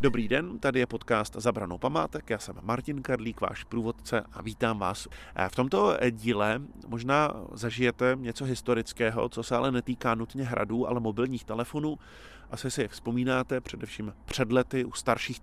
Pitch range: 105-125 Hz